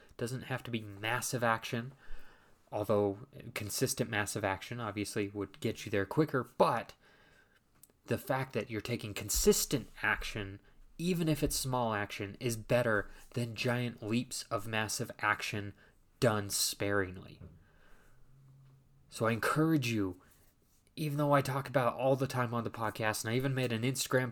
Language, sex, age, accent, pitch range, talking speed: English, male, 20-39, American, 105-135 Hz, 150 wpm